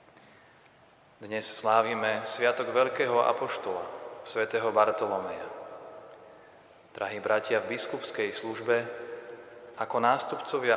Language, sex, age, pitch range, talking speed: Slovak, male, 30-49, 110-130 Hz, 80 wpm